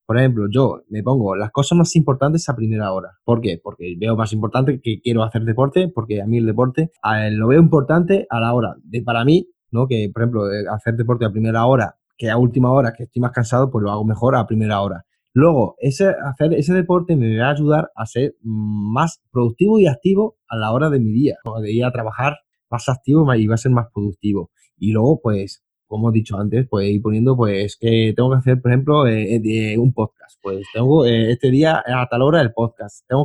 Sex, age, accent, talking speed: male, 20-39, Spanish, 225 wpm